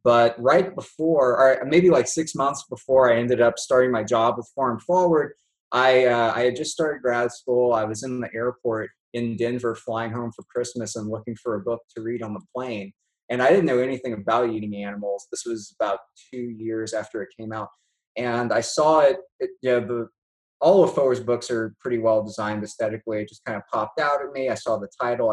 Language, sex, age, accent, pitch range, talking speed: English, male, 20-39, American, 110-130 Hz, 220 wpm